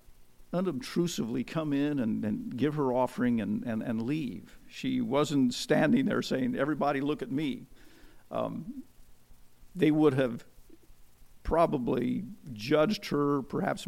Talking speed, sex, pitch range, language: 125 wpm, male, 115-155 Hz, English